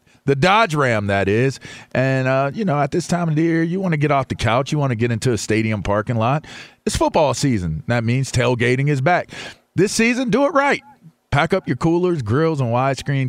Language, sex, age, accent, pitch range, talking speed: English, male, 40-59, American, 105-145 Hz, 230 wpm